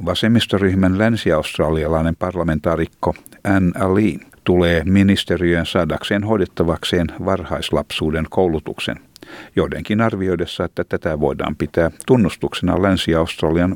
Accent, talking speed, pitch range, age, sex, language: native, 85 wpm, 85-100 Hz, 60-79, male, Finnish